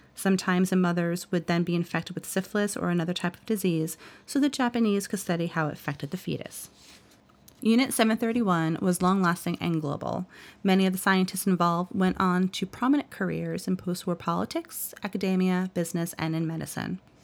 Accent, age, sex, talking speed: American, 30-49, female, 165 wpm